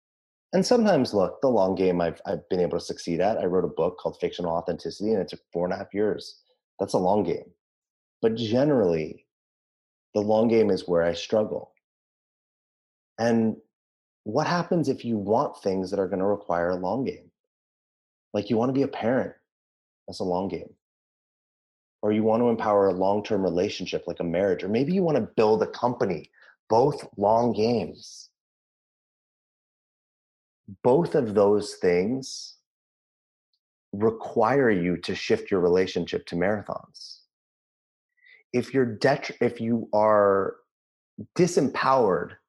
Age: 30-49